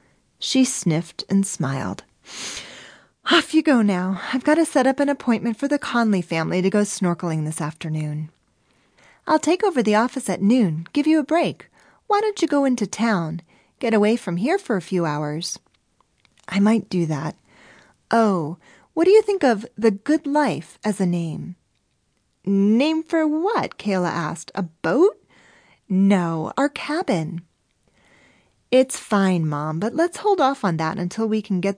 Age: 40-59